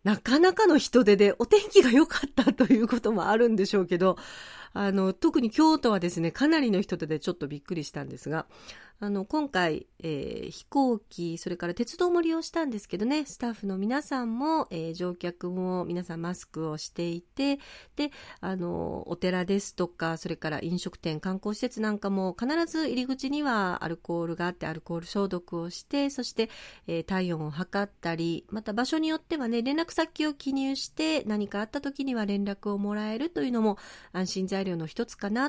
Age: 40-59